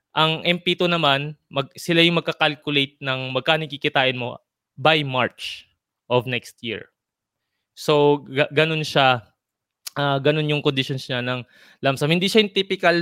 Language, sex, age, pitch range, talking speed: Filipino, male, 20-39, 130-165 Hz, 140 wpm